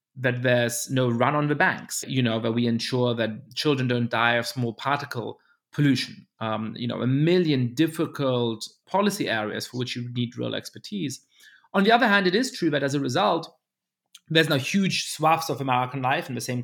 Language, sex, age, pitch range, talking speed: English, male, 30-49, 120-150 Hz, 200 wpm